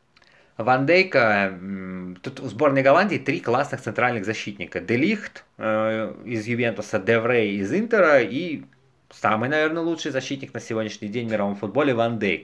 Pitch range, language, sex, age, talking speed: 105-130 Hz, Russian, male, 20-39, 135 wpm